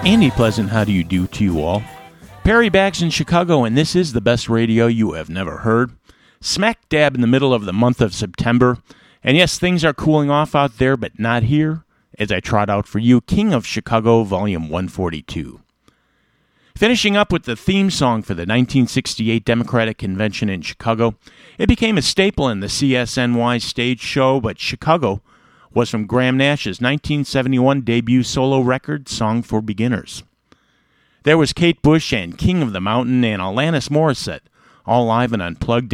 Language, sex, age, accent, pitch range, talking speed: English, male, 50-69, American, 110-145 Hz, 175 wpm